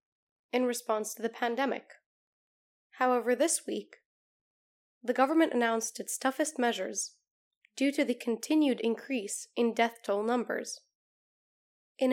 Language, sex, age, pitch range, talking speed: English, female, 10-29, 220-275 Hz, 120 wpm